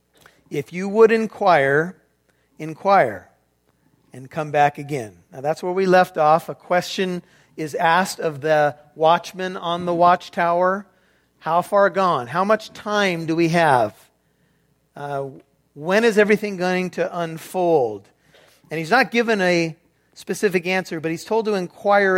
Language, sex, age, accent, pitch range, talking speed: English, male, 50-69, American, 155-190 Hz, 145 wpm